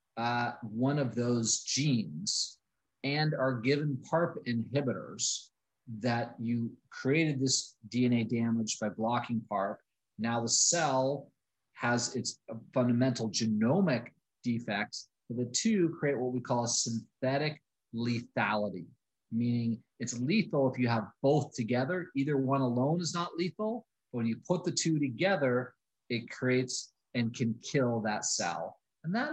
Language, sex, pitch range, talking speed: English, male, 115-140 Hz, 135 wpm